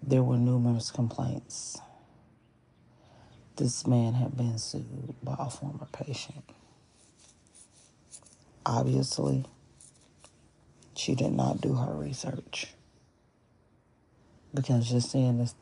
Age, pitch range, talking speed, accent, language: 40-59, 115-125 Hz, 90 wpm, American, English